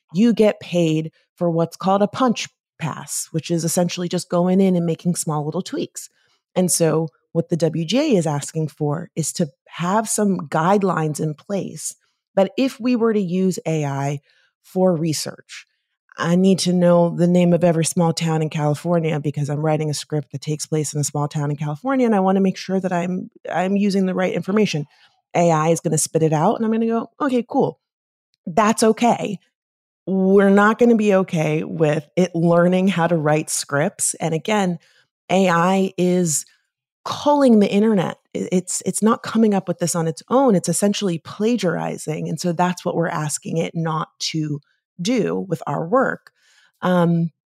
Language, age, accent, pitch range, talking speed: English, 30-49, American, 160-200 Hz, 185 wpm